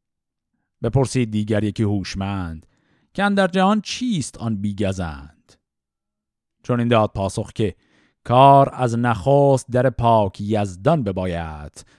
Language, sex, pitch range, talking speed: Persian, male, 105-140 Hz, 110 wpm